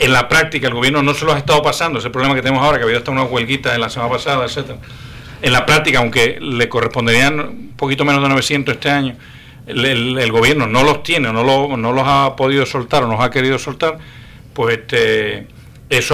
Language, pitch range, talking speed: English, 125-150 Hz, 230 wpm